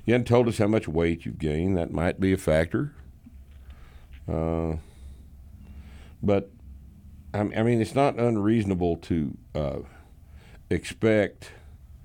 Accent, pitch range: American, 75-105 Hz